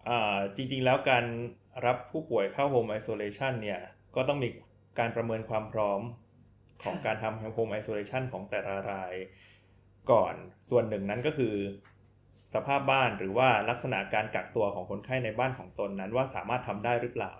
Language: Thai